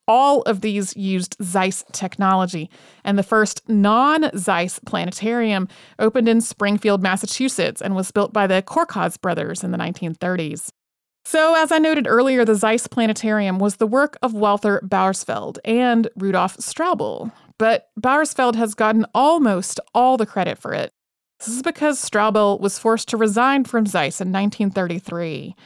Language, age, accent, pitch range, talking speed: English, 30-49, American, 195-240 Hz, 150 wpm